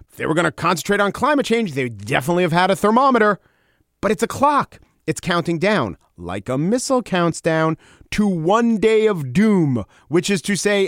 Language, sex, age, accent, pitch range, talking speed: English, male, 40-59, American, 130-190 Hz, 205 wpm